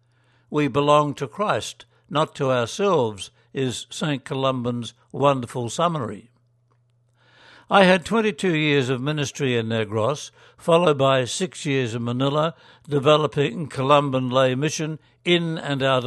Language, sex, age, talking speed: English, male, 60-79, 125 wpm